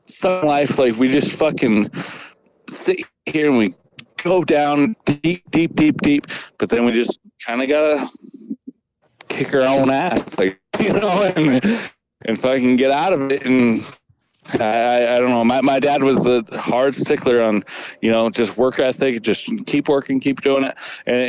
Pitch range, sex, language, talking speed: 120-150 Hz, male, English, 180 wpm